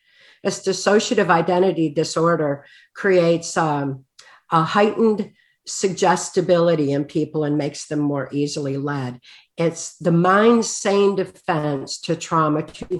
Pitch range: 155-205 Hz